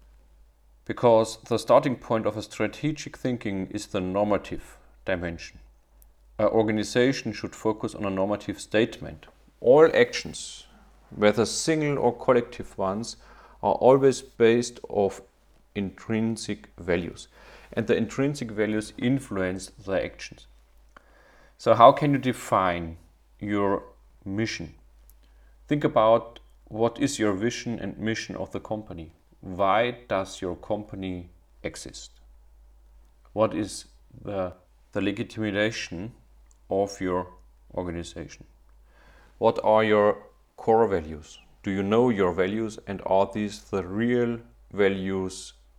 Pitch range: 75-110 Hz